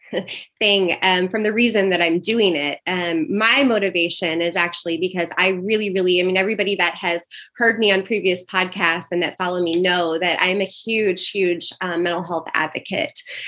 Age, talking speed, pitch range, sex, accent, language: 20-39, 185 wpm, 180-205 Hz, female, American, English